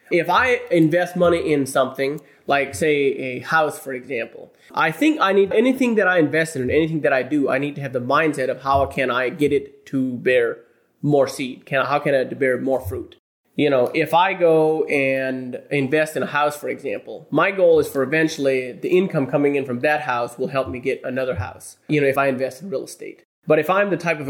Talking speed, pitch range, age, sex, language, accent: 225 wpm, 135-165 Hz, 30-49, male, English, American